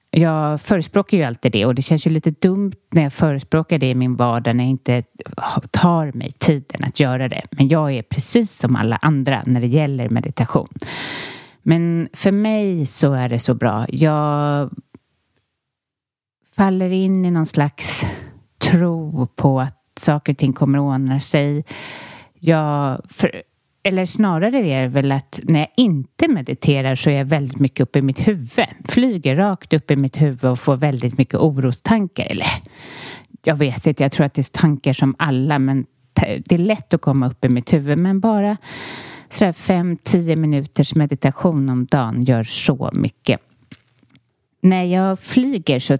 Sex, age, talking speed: female, 30-49, 165 wpm